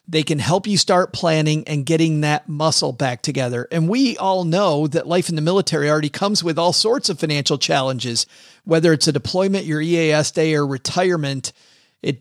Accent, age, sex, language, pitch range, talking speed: American, 40-59, male, English, 140-180 Hz, 190 wpm